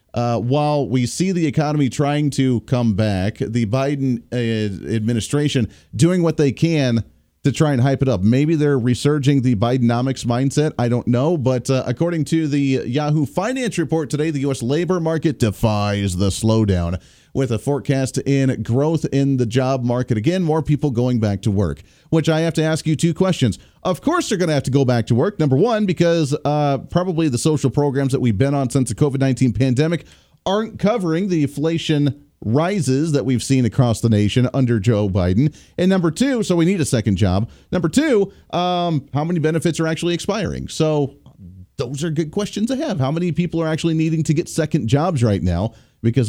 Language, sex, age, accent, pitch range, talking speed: English, male, 40-59, American, 115-155 Hz, 195 wpm